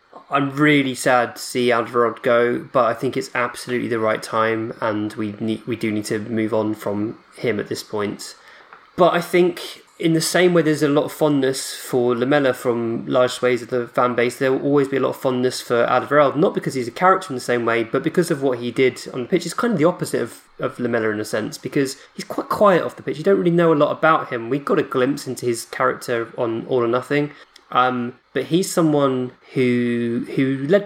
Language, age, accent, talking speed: English, 20-39, British, 235 wpm